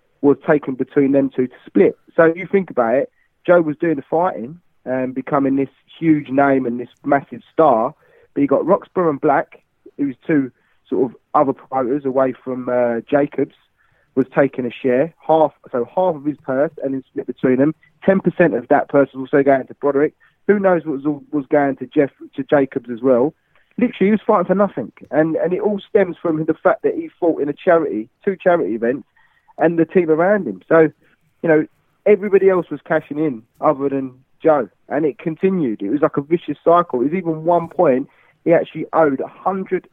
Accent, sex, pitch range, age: British, male, 135-175 Hz, 30-49